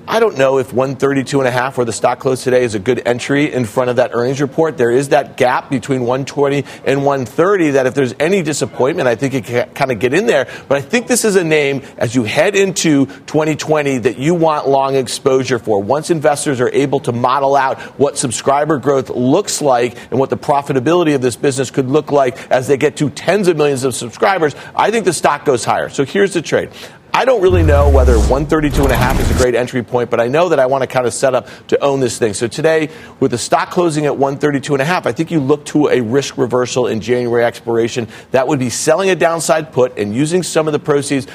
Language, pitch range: English, 125-150 Hz